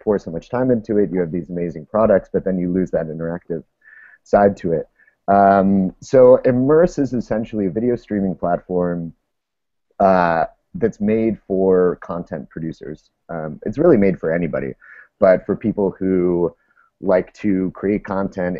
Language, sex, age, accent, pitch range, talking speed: English, male, 30-49, American, 85-100 Hz, 155 wpm